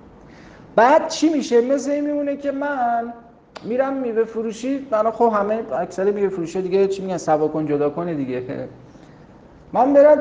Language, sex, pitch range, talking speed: Persian, male, 135-225 Hz, 160 wpm